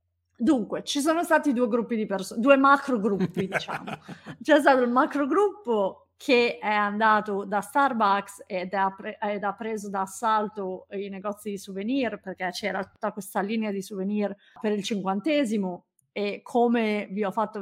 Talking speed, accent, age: 155 wpm, native, 30-49